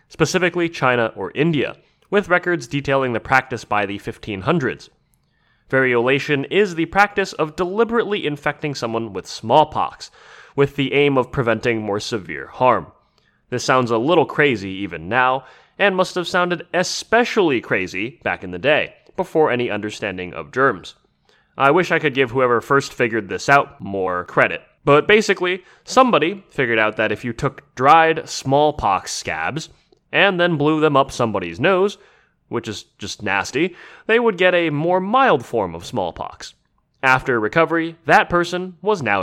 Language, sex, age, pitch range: English, male, 20-39, 120-180 Hz